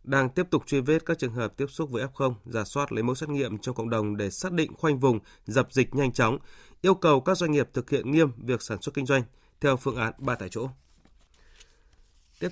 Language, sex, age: Vietnamese, male, 20-39